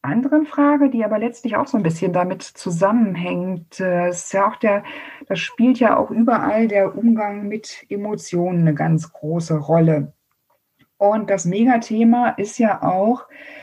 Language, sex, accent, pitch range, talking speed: German, female, German, 180-250 Hz, 135 wpm